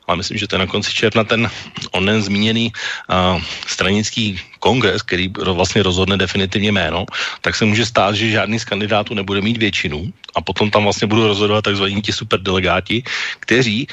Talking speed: 175 wpm